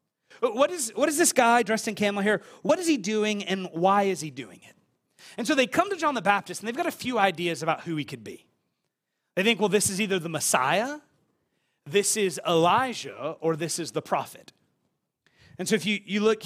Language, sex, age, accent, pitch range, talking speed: English, male, 30-49, American, 180-235 Hz, 220 wpm